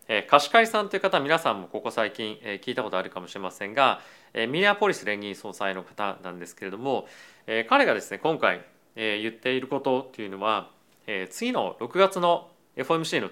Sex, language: male, Japanese